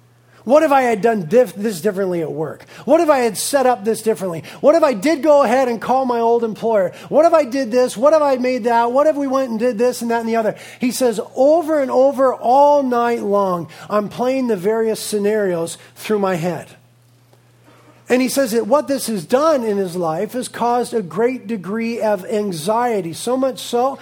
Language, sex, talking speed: English, male, 215 wpm